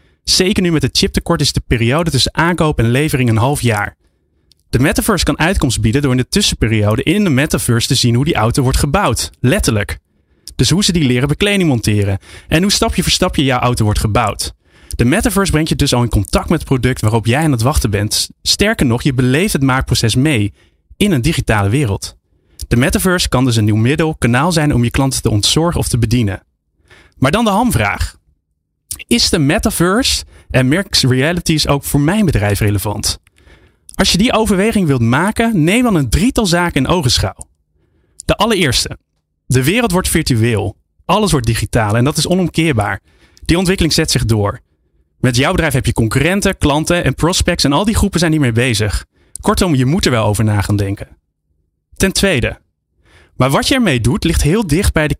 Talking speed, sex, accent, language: 195 wpm, male, Dutch, Dutch